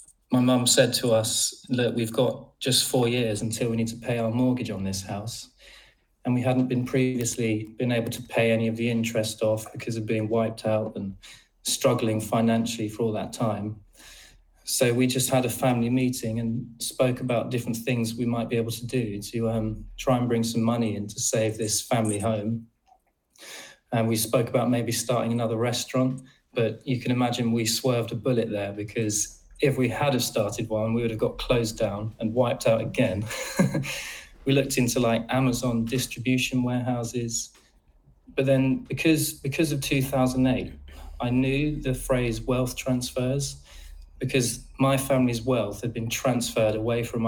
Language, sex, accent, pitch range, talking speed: English, male, British, 110-125 Hz, 180 wpm